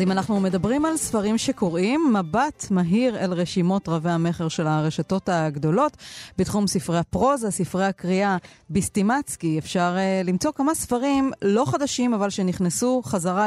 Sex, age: female, 30-49